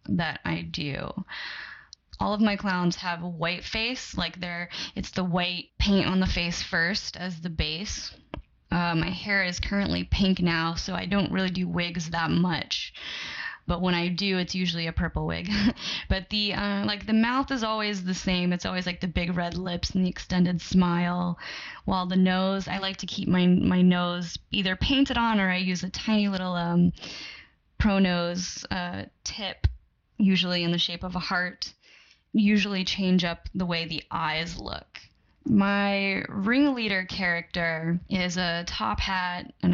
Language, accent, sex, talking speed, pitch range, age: English, American, female, 175 wpm, 175-200 Hz, 10-29